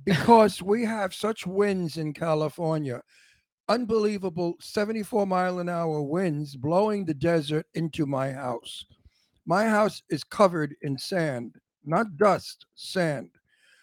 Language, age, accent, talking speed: English, 60-79, American, 120 wpm